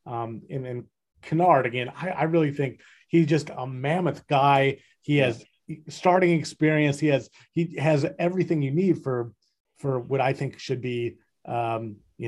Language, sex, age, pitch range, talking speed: English, male, 30-49, 120-150 Hz, 165 wpm